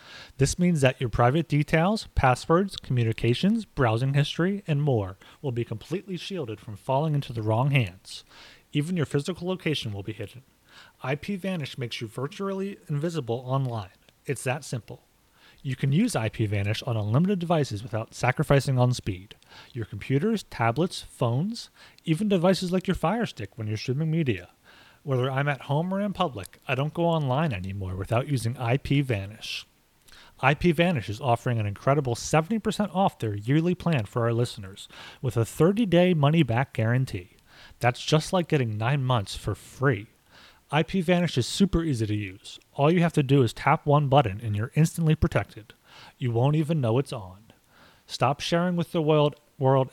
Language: English